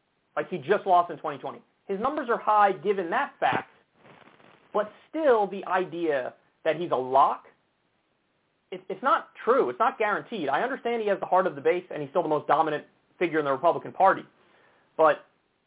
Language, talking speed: English, 185 wpm